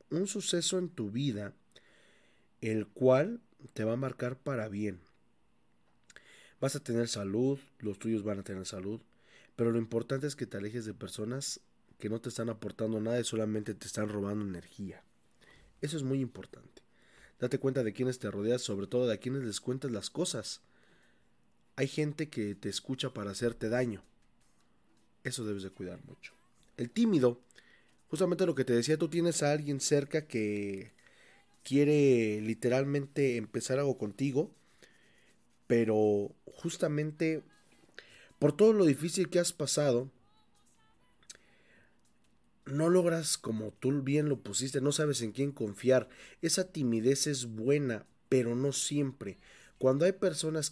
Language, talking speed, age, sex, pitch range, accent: Spanish, 145 wpm, 30-49, male, 110-145 Hz, Mexican